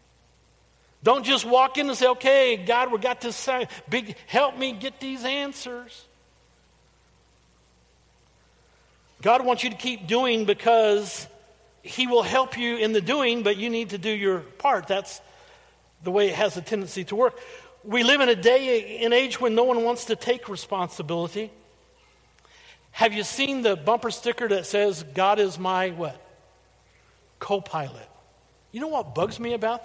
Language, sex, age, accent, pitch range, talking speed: English, male, 50-69, American, 210-265 Hz, 160 wpm